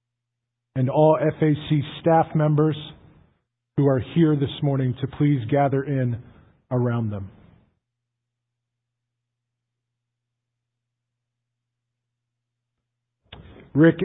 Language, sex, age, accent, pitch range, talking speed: English, male, 50-69, American, 120-170 Hz, 75 wpm